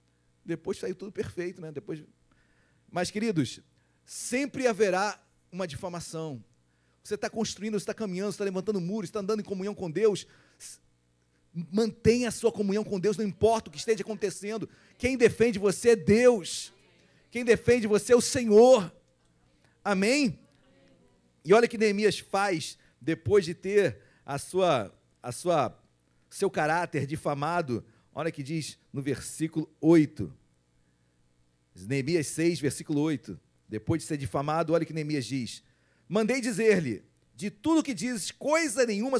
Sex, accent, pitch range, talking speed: male, Brazilian, 140-220 Hz, 150 wpm